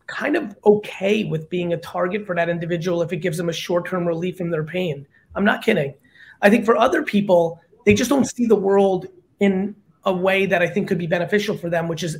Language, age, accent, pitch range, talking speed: English, 30-49, American, 180-230 Hz, 230 wpm